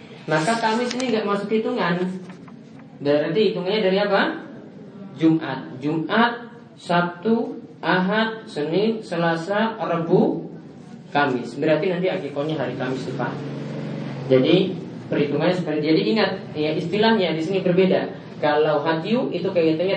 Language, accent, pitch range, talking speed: Indonesian, native, 150-205 Hz, 115 wpm